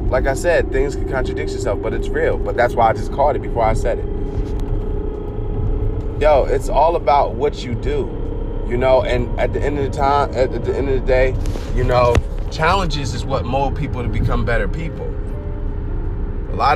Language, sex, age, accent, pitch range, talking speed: English, male, 30-49, American, 100-125 Hz, 200 wpm